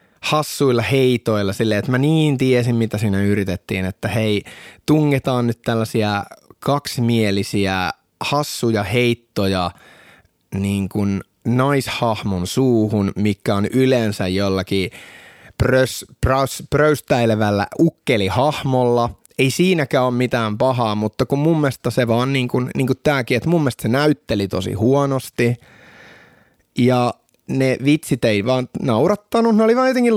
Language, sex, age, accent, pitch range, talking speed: Finnish, male, 30-49, native, 110-150 Hz, 125 wpm